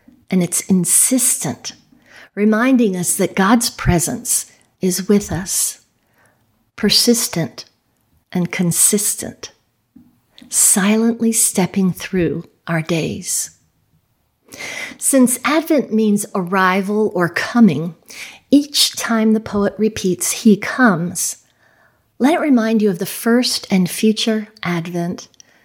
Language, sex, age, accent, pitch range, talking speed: English, female, 50-69, American, 170-225 Hz, 100 wpm